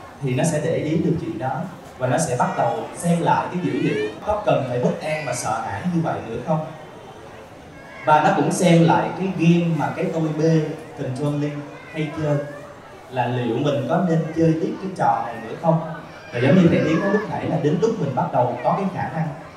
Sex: male